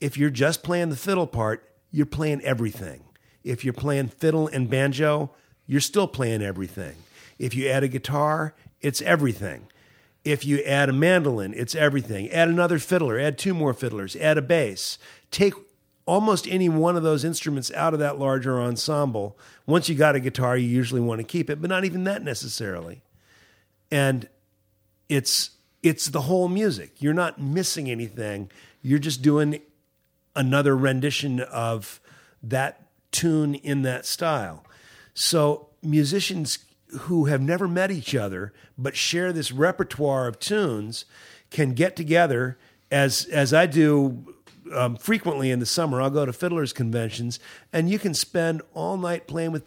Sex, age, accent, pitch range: male, 50-69, American, 125-160 Hz